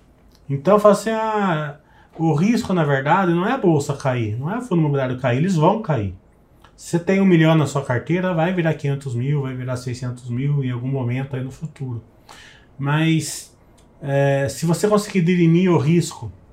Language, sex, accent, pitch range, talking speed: Portuguese, male, Brazilian, 125-155 Hz, 190 wpm